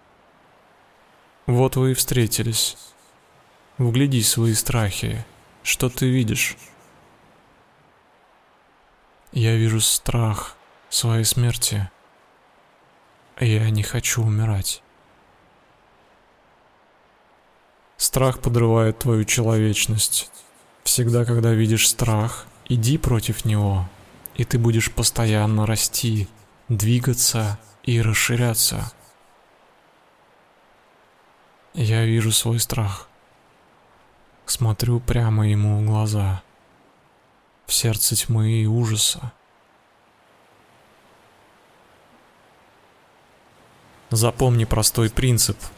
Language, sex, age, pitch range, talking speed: Russian, male, 20-39, 105-120 Hz, 75 wpm